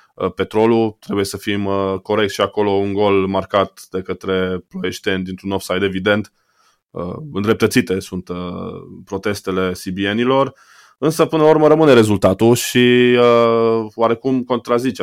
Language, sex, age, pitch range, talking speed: Romanian, male, 20-39, 95-120 Hz, 125 wpm